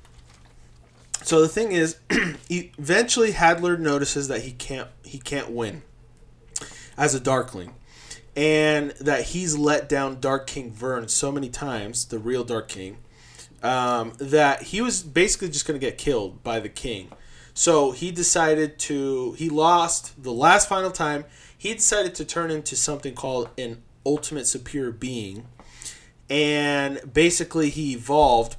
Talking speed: 145 wpm